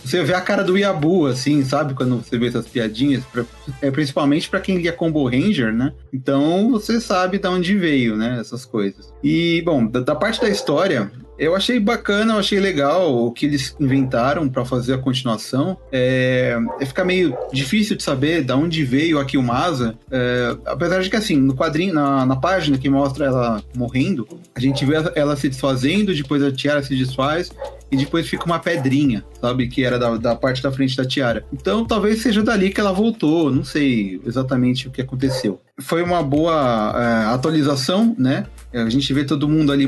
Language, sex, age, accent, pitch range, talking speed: Portuguese, male, 30-49, Brazilian, 125-165 Hz, 195 wpm